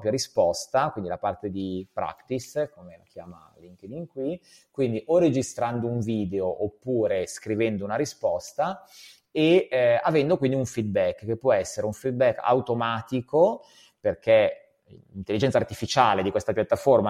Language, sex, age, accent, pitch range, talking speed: Italian, male, 30-49, native, 105-130 Hz, 135 wpm